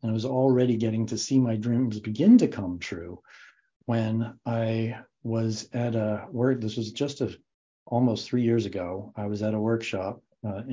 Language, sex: English, male